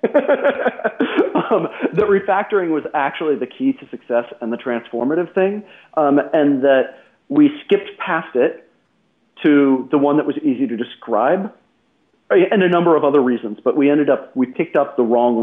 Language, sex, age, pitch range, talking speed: English, male, 40-59, 130-200 Hz, 165 wpm